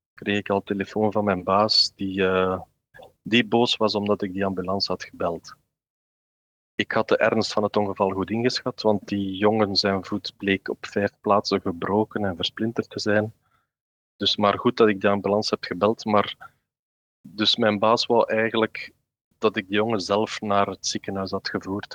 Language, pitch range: Dutch, 100-110 Hz